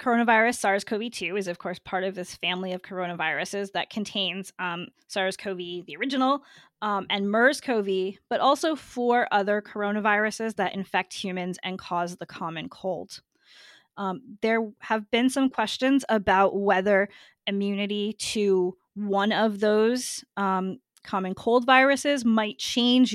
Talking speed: 135 wpm